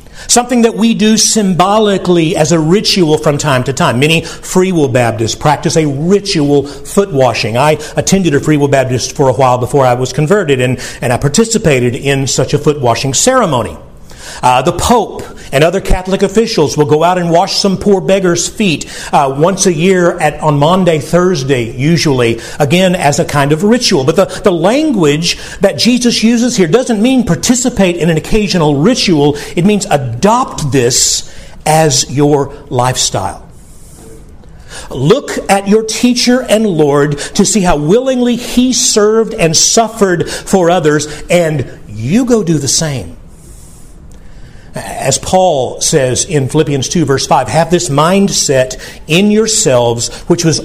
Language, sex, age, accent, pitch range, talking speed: English, male, 50-69, American, 140-200 Hz, 160 wpm